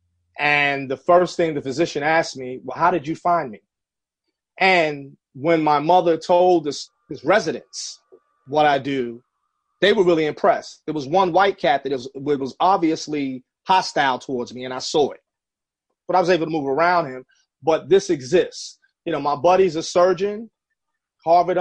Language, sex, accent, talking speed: English, male, American, 175 wpm